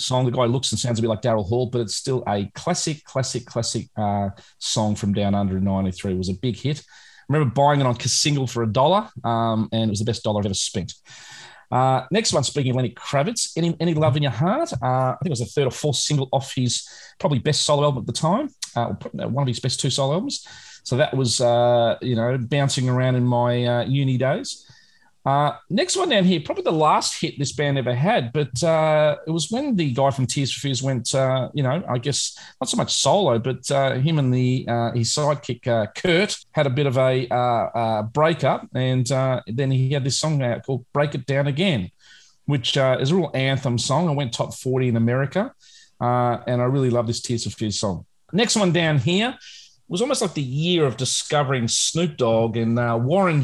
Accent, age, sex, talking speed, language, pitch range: Australian, 30-49, male, 230 wpm, English, 120-150 Hz